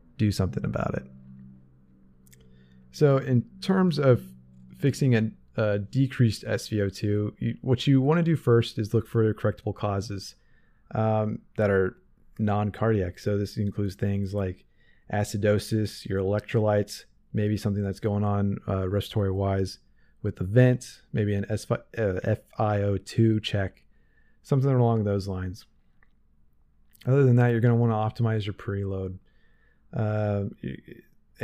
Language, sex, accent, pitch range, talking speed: English, male, American, 100-120 Hz, 130 wpm